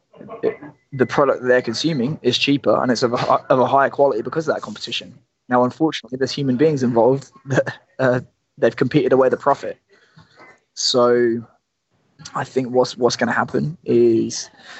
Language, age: English, 20-39